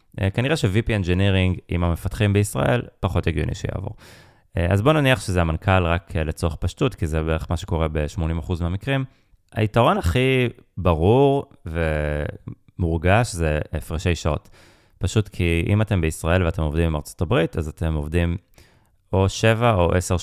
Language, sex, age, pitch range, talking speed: Hebrew, male, 20-39, 85-105 Hz, 150 wpm